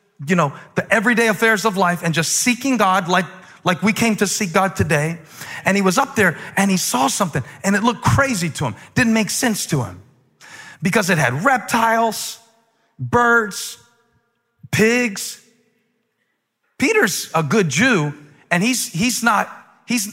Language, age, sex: English, 40-59, male